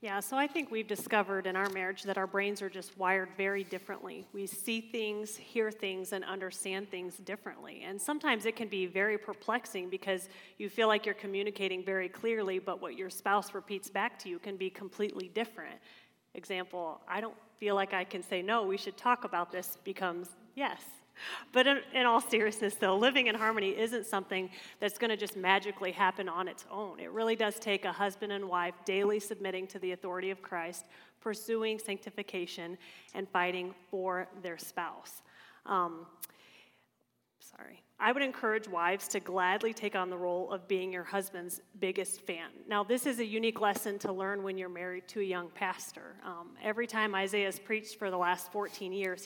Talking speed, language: 190 wpm, English